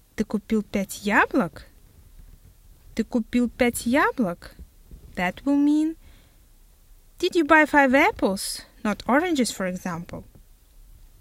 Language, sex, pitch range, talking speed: Russian, female, 170-270 Hz, 105 wpm